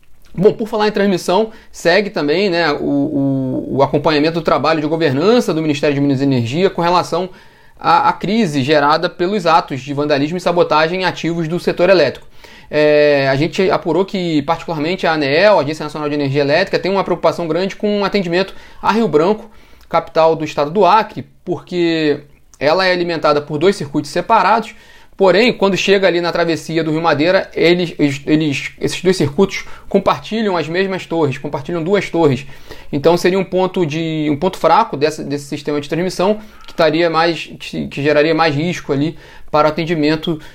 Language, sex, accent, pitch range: Portuguese, male, Brazilian, 150-185 Hz